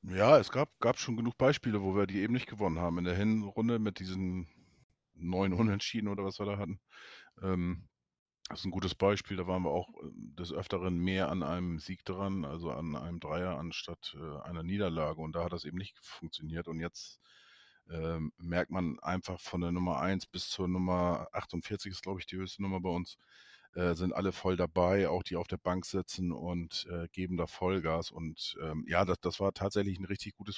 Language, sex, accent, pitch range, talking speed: German, male, German, 90-110 Hz, 205 wpm